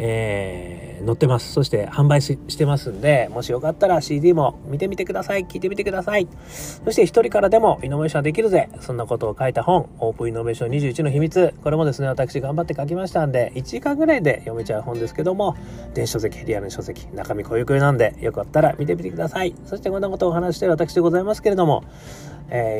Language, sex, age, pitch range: Japanese, male, 30-49, 120-175 Hz